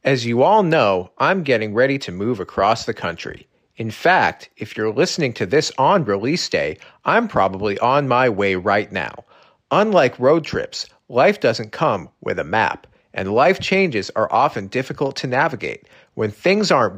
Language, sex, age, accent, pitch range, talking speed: English, male, 40-59, American, 110-170 Hz, 175 wpm